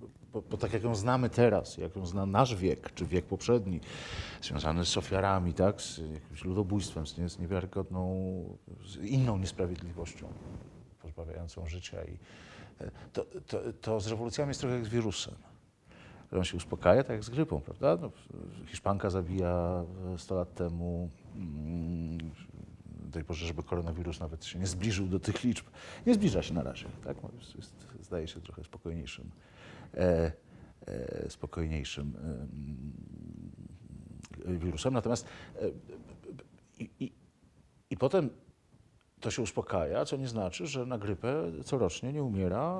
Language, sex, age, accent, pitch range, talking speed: Polish, male, 50-69, native, 85-115 Hz, 140 wpm